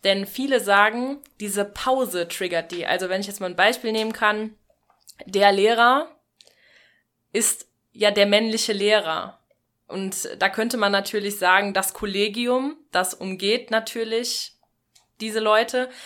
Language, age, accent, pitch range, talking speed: German, 20-39, German, 190-235 Hz, 135 wpm